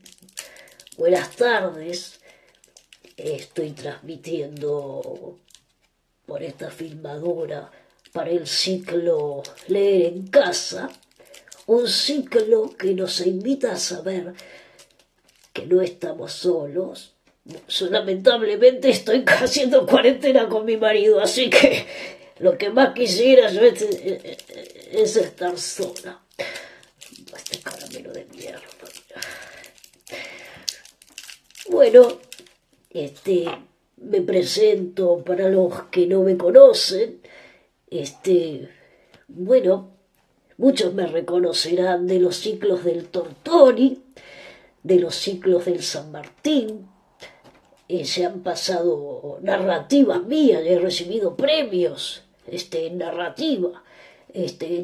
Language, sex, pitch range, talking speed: Spanish, female, 175-265 Hz, 90 wpm